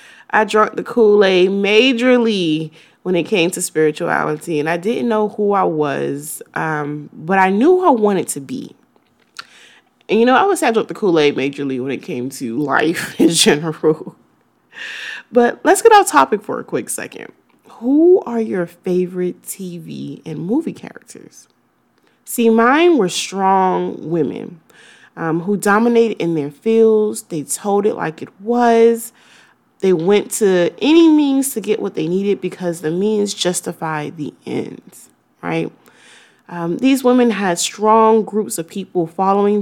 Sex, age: female, 20-39